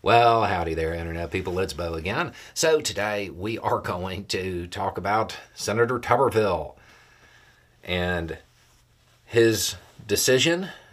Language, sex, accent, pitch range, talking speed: English, male, American, 85-110 Hz, 115 wpm